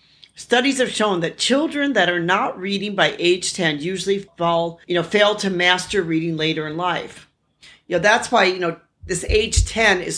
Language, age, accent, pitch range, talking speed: English, 50-69, American, 165-215 Hz, 195 wpm